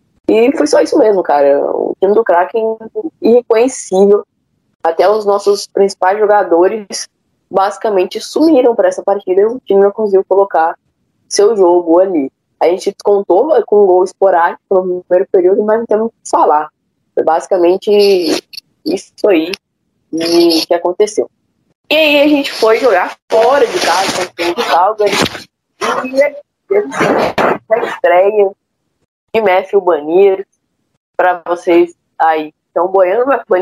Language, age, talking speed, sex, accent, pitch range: Portuguese, 10-29, 135 wpm, female, Brazilian, 175-230 Hz